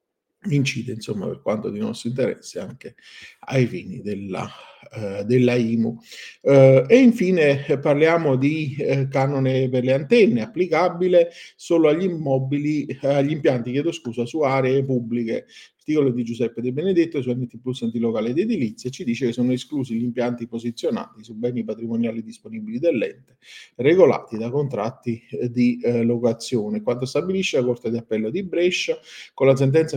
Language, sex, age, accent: Italian, male, 50-69, native